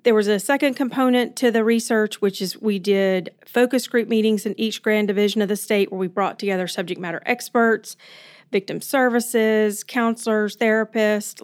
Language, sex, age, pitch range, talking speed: English, female, 40-59, 195-225 Hz, 175 wpm